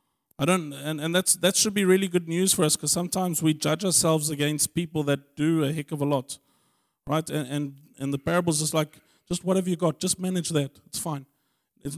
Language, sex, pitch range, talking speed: English, male, 140-165 Hz, 225 wpm